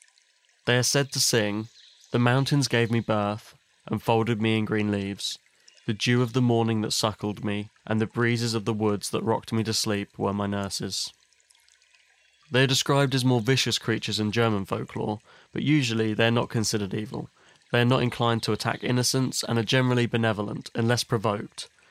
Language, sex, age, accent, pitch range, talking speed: English, male, 20-39, British, 105-120 Hz, 185 wpm